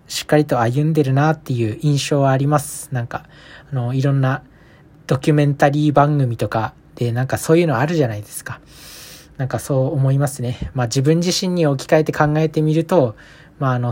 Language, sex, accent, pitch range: Japanese, male, native, 130-160 Hz